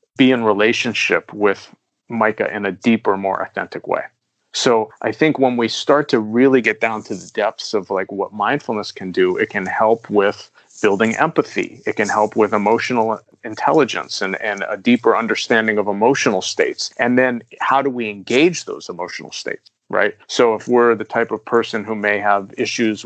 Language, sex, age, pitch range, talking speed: English, male, 40-59, 105-130 Hz, 185 wpm